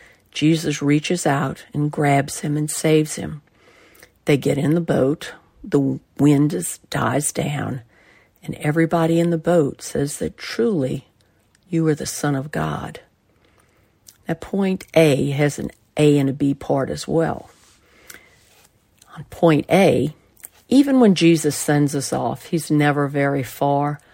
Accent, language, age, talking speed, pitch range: American, English, 50-69, 140 wpm, 140-160 Hz